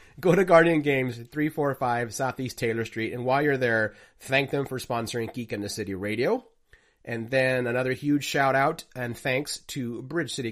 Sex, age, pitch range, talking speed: male, 30-49, 115-140 Hz, 185 wpm